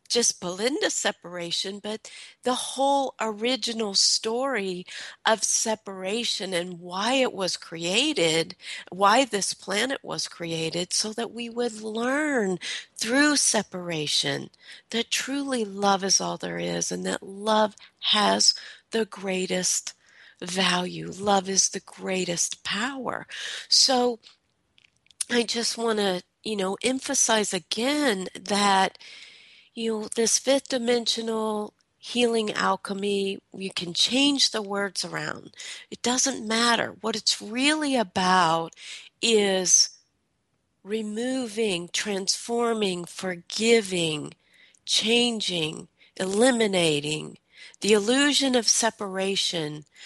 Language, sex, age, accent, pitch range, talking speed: English, female, 40-59, American, 185-235 Hz, 105 wpm